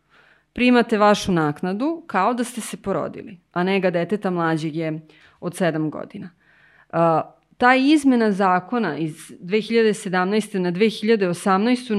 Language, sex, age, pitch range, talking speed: English, female, 30-49, 175-245 Hz, 115 wpm